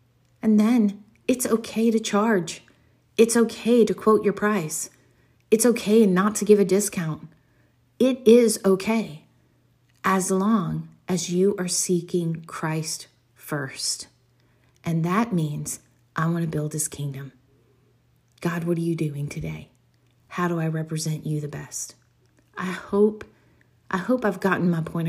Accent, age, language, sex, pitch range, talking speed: American, 40-59, English, female, 160-205 Hz, 145 wpm